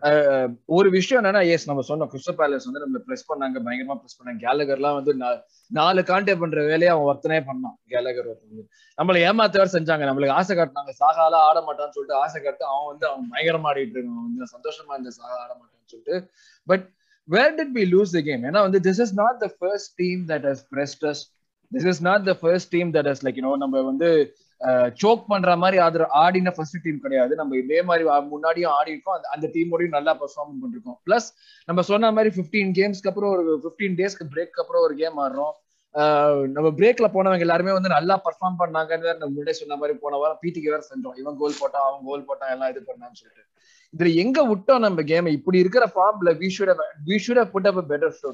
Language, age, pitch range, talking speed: Tamil, 20-39, 145-195 Hz, 105 wpm